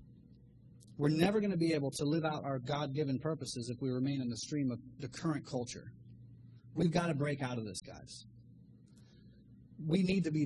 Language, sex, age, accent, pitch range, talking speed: English, male, 30-49, American, 120-155 Hz, 195 wpm